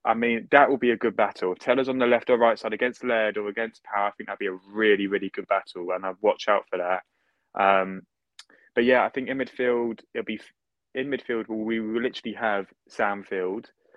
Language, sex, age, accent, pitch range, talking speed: English, male, 20-39, British, 100-125 Hz, 225 wpm